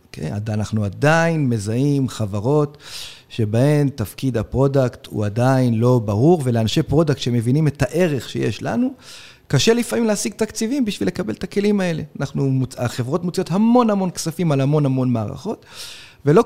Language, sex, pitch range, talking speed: Hebrew, male, 120-160 Hz, 140 wpm